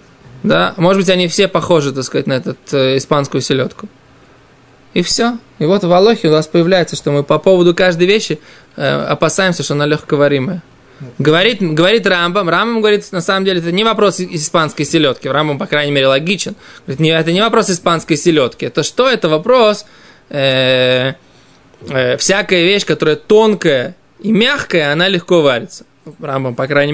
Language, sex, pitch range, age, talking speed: Russian, male, 140-185 Hz, 20-39, 160 wpm